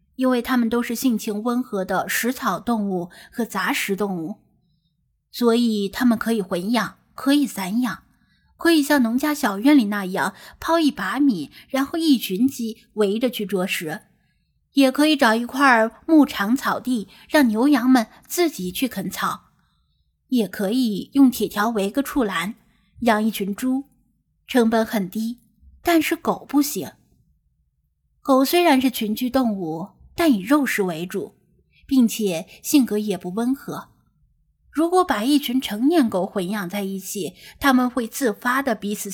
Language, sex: Chinese, female